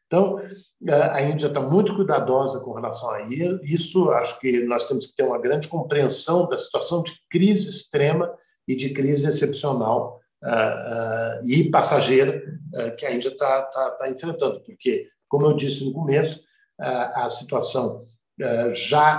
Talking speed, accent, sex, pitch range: 140 wpm, Brazilian, male, 120-155 Hz